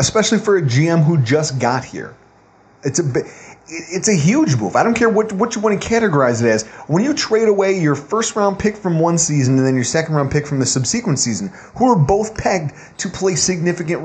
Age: 30-49